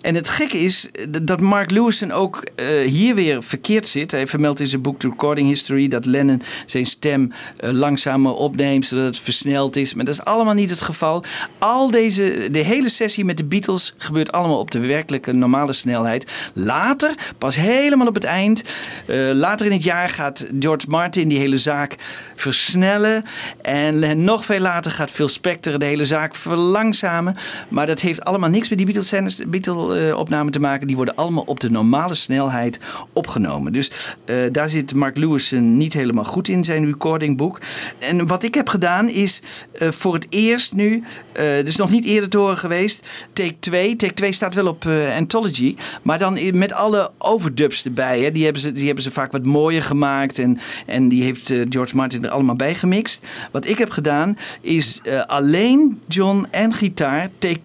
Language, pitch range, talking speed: Dutch, 140-200 Hz, 190 wpm